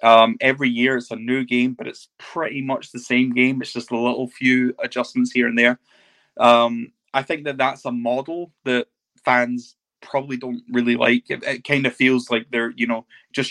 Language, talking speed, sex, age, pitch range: English, 205 wpm, male, 20-39, 120-130 Hz